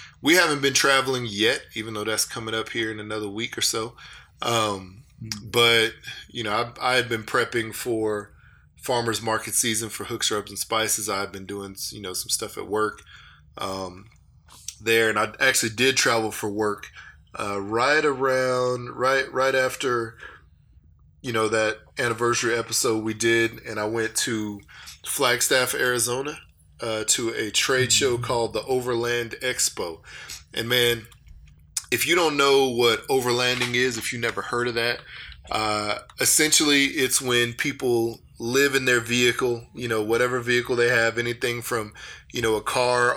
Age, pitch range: 20-39, 110-125 Hz